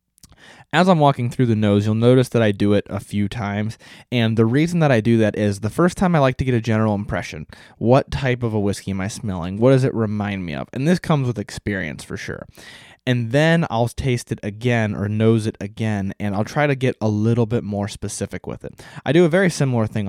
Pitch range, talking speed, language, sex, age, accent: 100-125 Hz, 245 wpm, English, male, 20-39, American